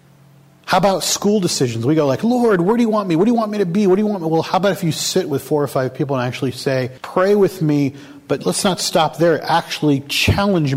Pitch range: 130-170 Hz